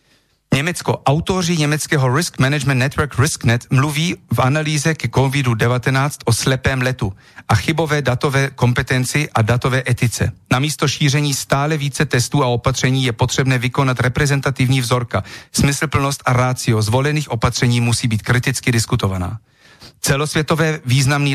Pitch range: 120-140 Hz